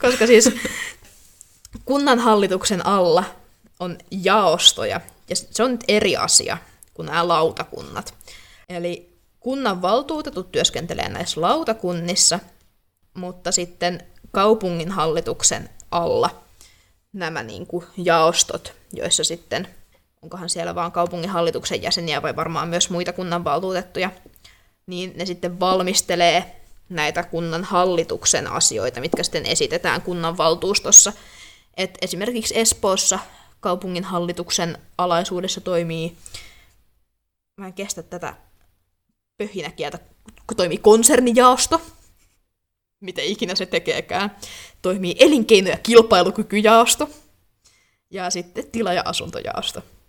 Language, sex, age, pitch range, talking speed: Finnish, female, 20-39, 170-200 Hz, 100 wpm